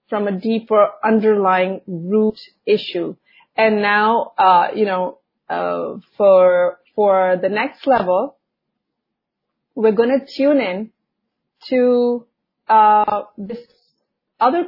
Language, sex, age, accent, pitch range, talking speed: English, female, 30-49, Indian, 195-255 Hz, 105 wpm